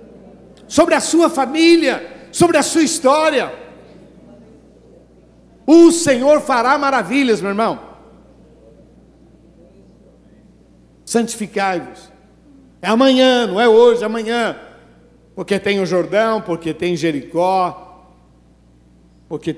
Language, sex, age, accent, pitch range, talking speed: Portuguese, male, 60-79, Brazilian, 160-210 Hz, 90 wpm